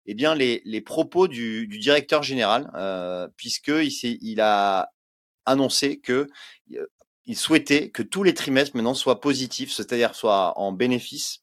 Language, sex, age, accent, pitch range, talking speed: French, male, 30-49, French, 105-140 Hz, 150 wpm